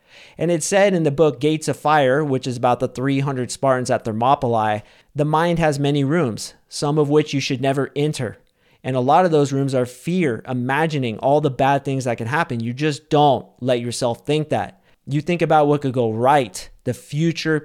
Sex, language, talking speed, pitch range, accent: male, English, 205 wpm, 125-160 Hz, American